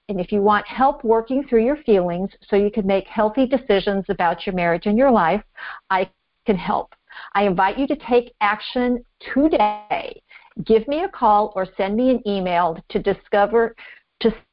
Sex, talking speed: female, 180 wpm